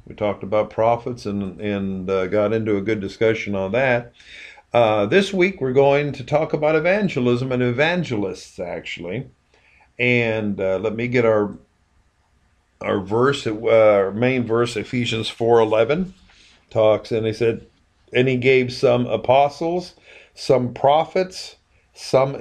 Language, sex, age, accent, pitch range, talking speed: English, male, 50-69, American, 105-135 Hz, 135 wpm